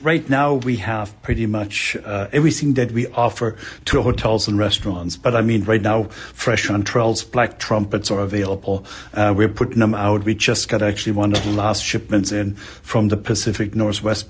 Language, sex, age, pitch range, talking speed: English, male, 60-79, 105-120 Hz, 190 wpm